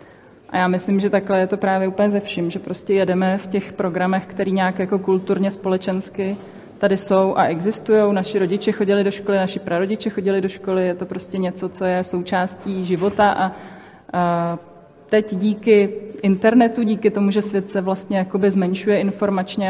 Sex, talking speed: female, 175 wpm